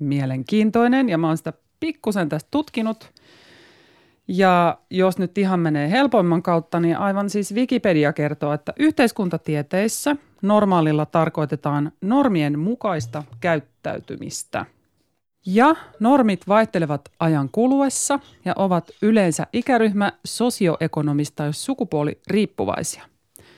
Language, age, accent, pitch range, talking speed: Finnish, 30-49, native, 155-220 Hz, 100 wpm